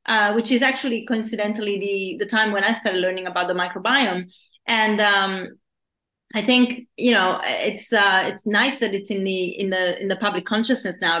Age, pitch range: 30-49, 180-215 Hz